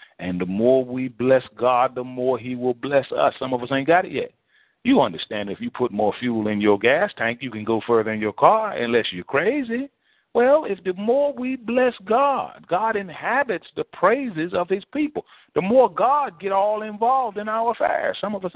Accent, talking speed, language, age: American, 215 wpm, English, 40-59